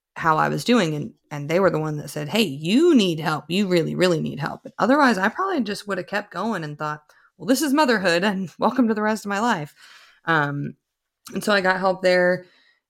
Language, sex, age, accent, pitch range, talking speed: English, female, 20-39, American, 145-200 Hz, 235 wpm